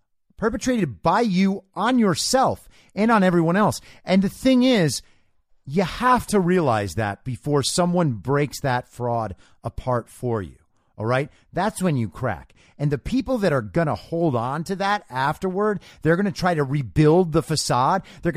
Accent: American